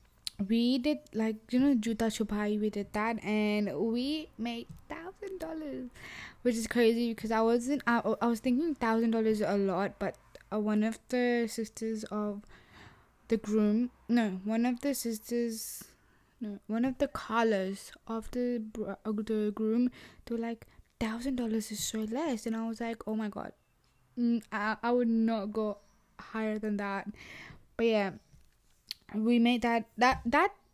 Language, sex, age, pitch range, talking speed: English, female, 10-29, 210-235 Hz, 160 wpm